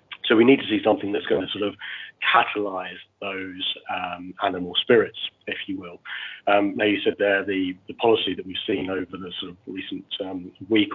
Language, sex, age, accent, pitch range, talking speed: English, male, 30-49, British, 95-110 Hz, 205 wpm